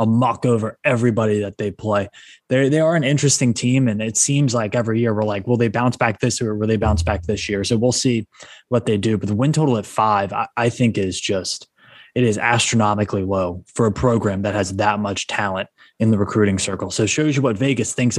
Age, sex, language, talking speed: 20-39, male, English, 245 wpm